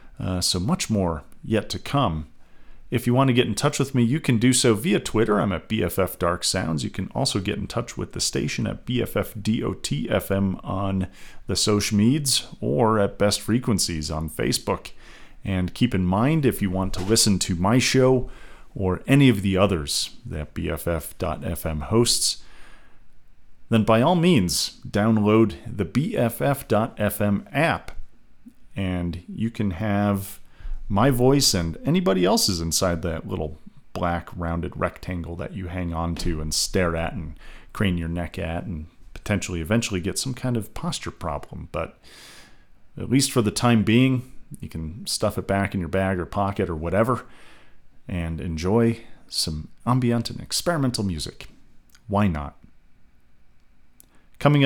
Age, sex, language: 40-59, male, English